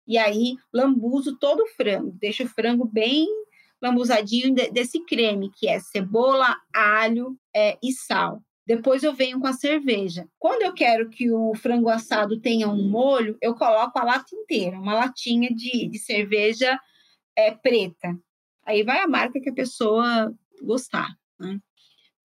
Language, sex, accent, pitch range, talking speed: English, female, Brazilian, 215-265 Hz, 150 wpm